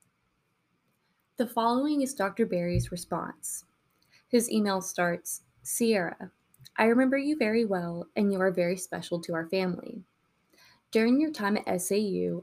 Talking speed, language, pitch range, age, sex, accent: 135 wpm, English, 175-220 Hz, 20-39, female, American